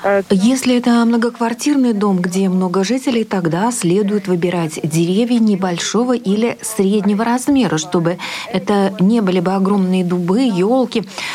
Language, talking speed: Russian, 120 wpm